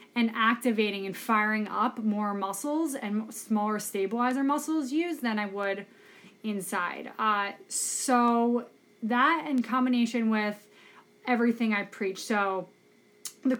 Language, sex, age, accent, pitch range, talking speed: English, female, 20-39, American, 200-230 Hz, 120 wpm